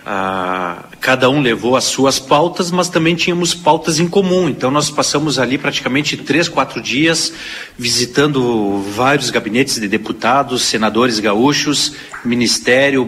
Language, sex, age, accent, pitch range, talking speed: Portuguese, male, 40-59, Brazilian, 125-180 Hz, 130 wpm